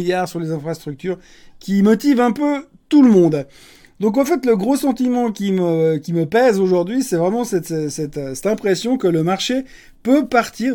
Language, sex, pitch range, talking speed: French, male, 165-210 Hz, 190 wpm